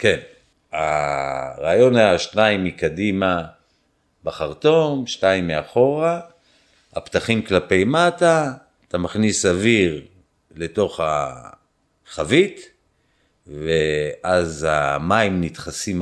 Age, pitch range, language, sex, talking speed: 50-69, 85-115 Hz, Hebrew, male, 70 wpm